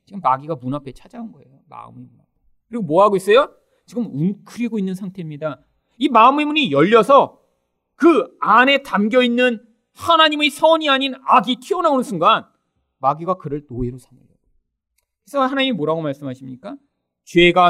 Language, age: Korean, 30-49